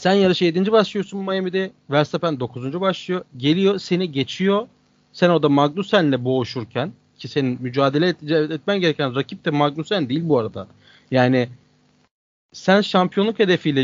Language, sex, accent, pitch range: Turkish, male, native, 145-210 Hz